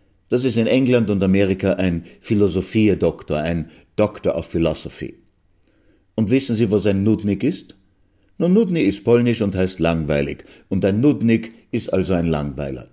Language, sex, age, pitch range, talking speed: German, male, 60-79, 90-120 Hz, 155 wpm